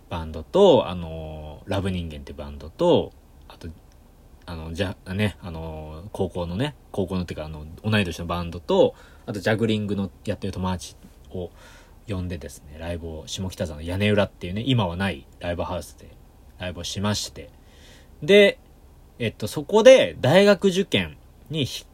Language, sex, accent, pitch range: Japanese, male, native, 85-135 Hz